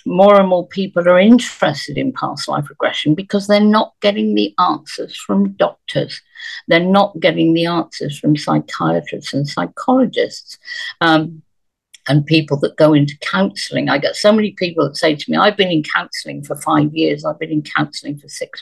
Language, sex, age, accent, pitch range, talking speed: English, female, 50-69, British, 160-240 Hz, 180 wpm